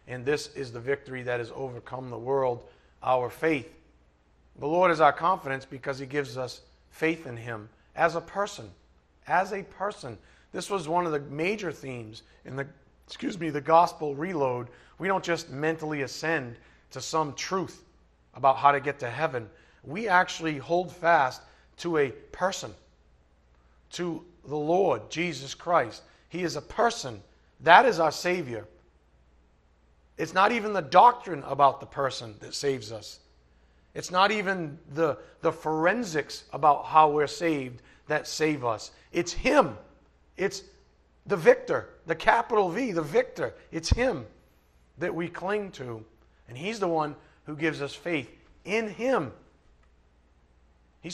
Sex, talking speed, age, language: male, 150 wpm, 40-59, English